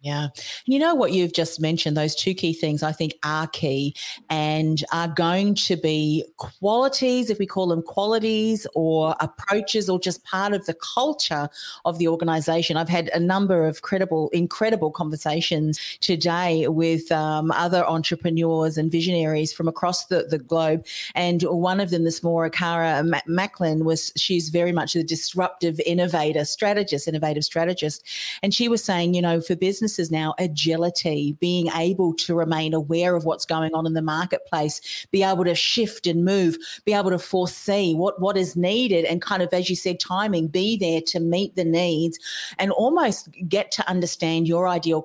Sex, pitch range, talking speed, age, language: female, 160-185 Hz, 175 wpm, 40-59, English